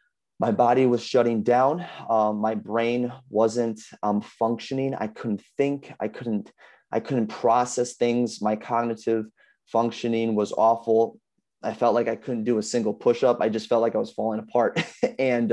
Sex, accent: male, American